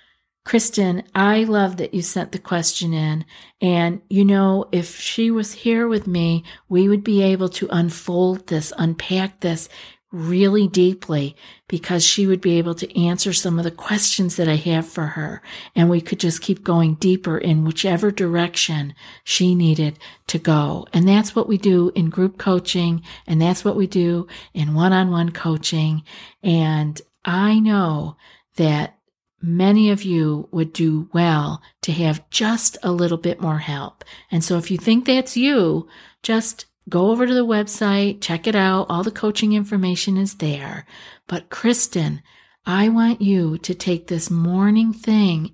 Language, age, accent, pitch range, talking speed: English, 50-69, American, 165-200 Hz, 165 wpm